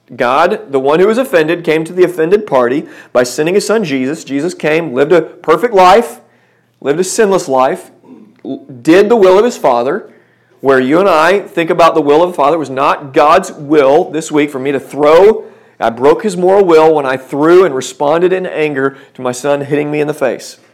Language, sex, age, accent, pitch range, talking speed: English, male, 40-59, American, 140-180 Hz, 215 wpm